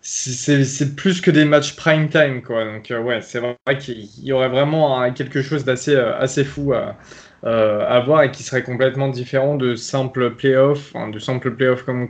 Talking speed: 210 wpm